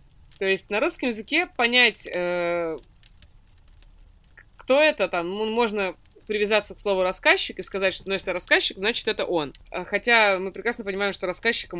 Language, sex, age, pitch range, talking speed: Russian, female, 20-39, 160-210 Hz, 155 wpm